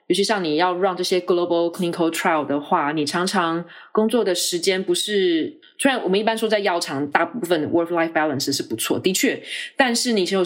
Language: Chinese